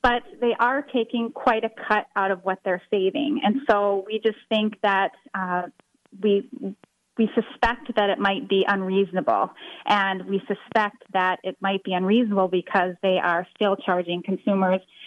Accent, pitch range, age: American, 195-235 Hz, 30-49